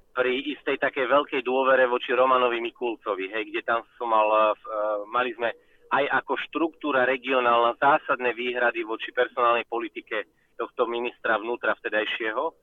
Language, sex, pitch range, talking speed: Slovak, male, 120-145 Hz, 130 wpm